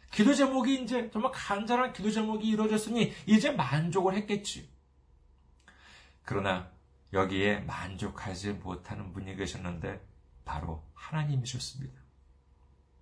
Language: Korean